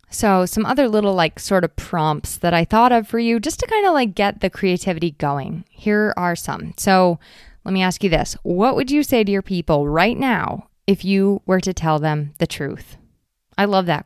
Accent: American